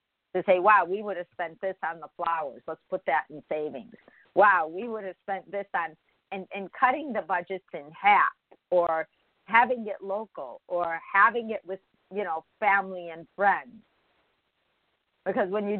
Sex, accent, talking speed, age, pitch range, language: female, American, 175 wpm, 50-69, 160-195 Hz, English